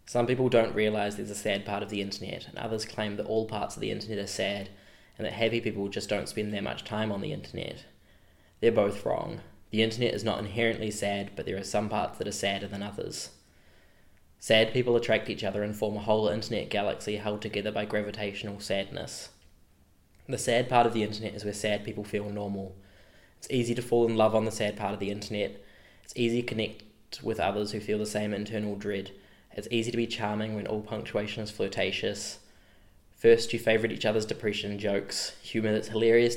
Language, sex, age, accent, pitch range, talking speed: English, male, 10-29, Australian, 100-110 Hz, 210 wpm